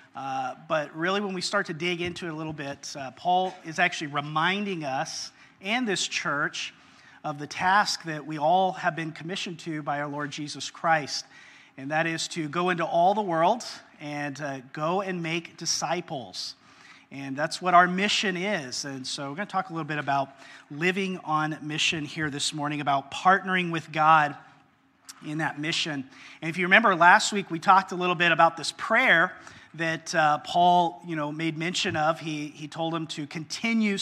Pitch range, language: 150-180 Hz, English